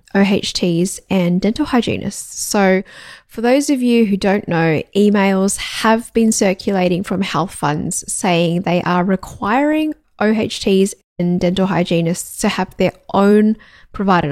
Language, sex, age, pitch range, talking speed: English, female, 10-29, 185-225 Hz, 135 wpm